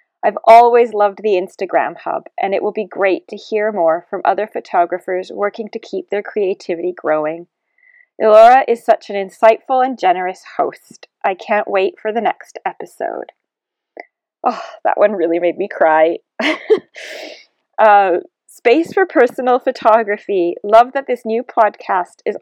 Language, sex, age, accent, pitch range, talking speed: English, female, 30-49, American, 185-260 Hz, 150 wpm